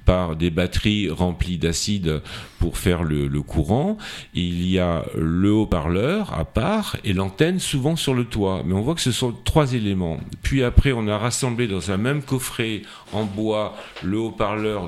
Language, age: French, 50-69